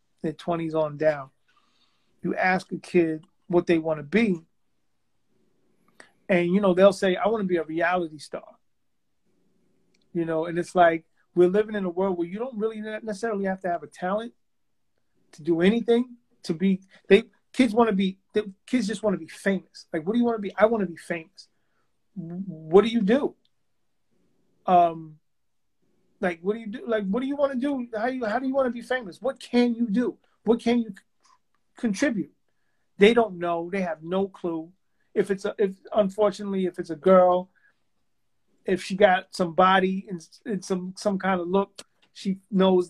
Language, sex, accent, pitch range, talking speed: English, male, American, 180-215 Hz, 195 wpm